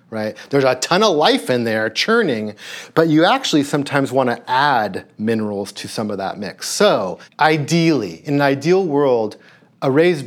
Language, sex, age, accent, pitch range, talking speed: English, male, 40-59, American, 115-160 Hz, 170 wpm